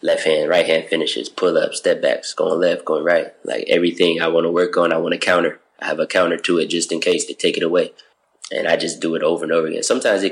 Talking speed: 280 wpm